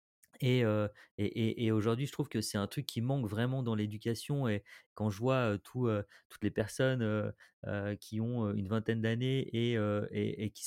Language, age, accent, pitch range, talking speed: French, 30-49, French, 105-120 Hz, 195 wpm